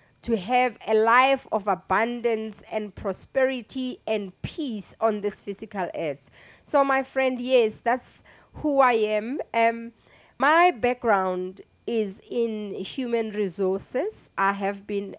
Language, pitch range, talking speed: English, 195-250 Hz, 125 wpm